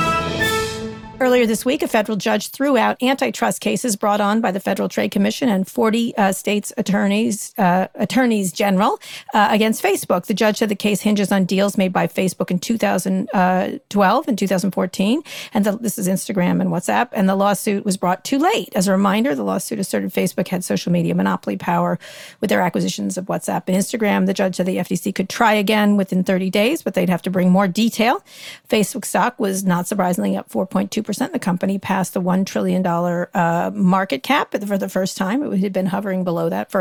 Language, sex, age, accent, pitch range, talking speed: English, female, 40-59, American, 185-220 Hz, 200 wpm